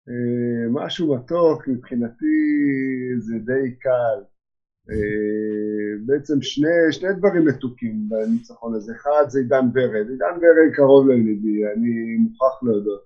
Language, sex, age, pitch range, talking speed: Hebrew, male, 50-69, 135-200 Hz, 120 wpm